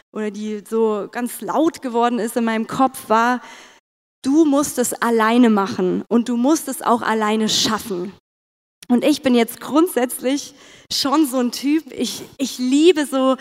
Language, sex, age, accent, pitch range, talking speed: German, female, 20-39, German, 225-275 Hz, 160 wpm